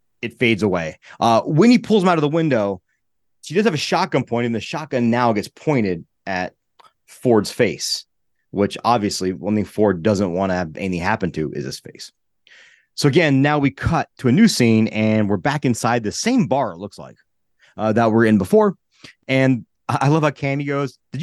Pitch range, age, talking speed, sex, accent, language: 105-145 Hz, 30-49, 210 wpm, male, American, English